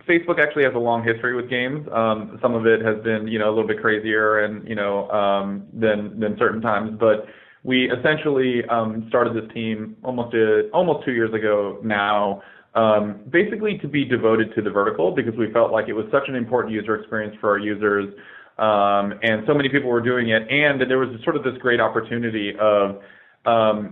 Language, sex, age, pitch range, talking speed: English, male, 20-39, 105-120 Hz, 210 wpm